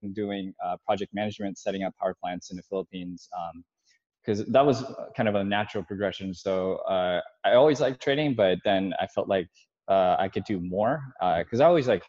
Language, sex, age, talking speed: English, male, 20-39, 205 wpm